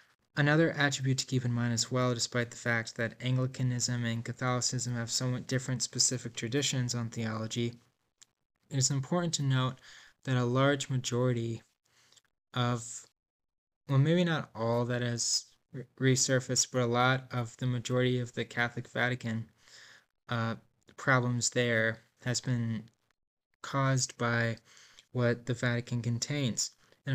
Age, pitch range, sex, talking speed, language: 20-39, 120-130 Hz, male, 135 wpm, English